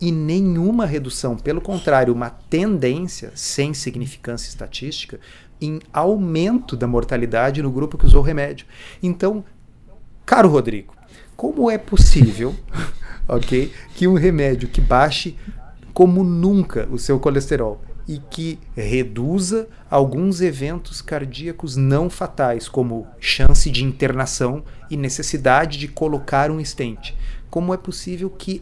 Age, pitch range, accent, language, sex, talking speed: 40-59, 130-175 Hz, Brazilian, Portuguese, male, 120 wpm